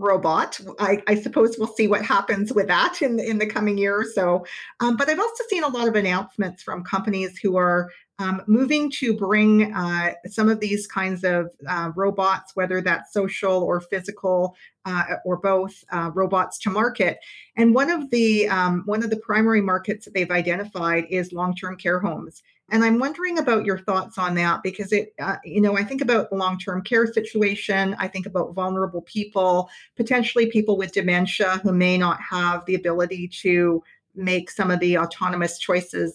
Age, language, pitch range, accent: 40-59, English, 180-215 Hz, American